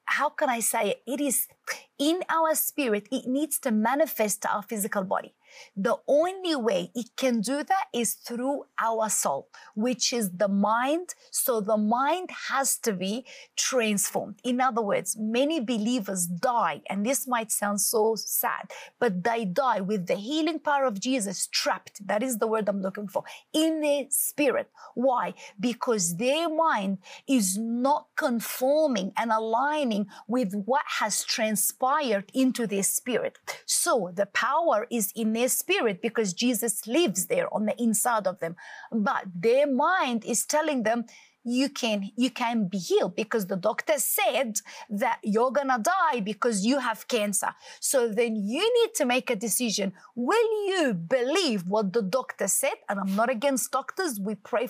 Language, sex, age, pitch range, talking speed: English, female, 30-49, 215-285 Hz, 165 wpm